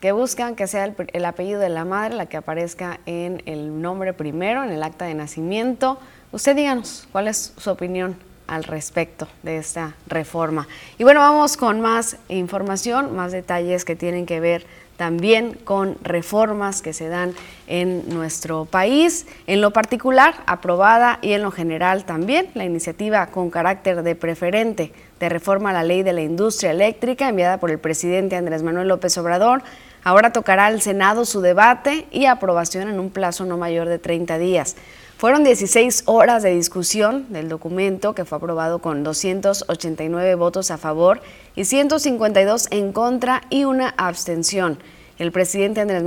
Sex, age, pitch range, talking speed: female, 20-39, 170-215 Hz, 165 wpm